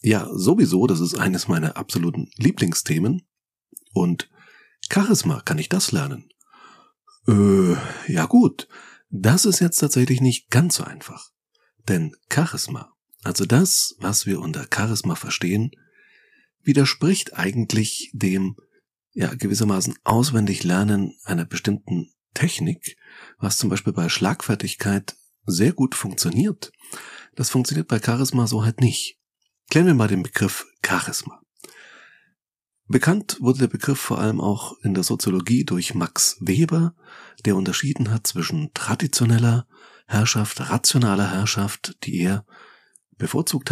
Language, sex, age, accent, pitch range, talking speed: German, male, 40-59, German, 100-145 Hz, 120 wpm